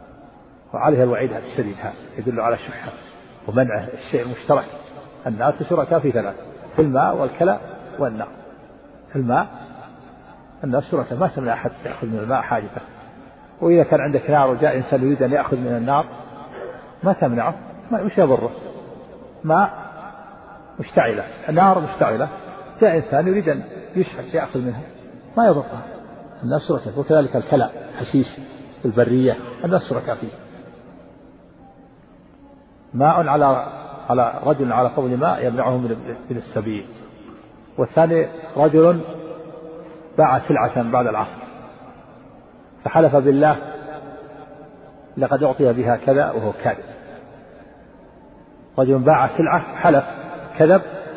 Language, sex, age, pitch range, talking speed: Arabic, male, 50-69, 130-160 Hz, 110 wpm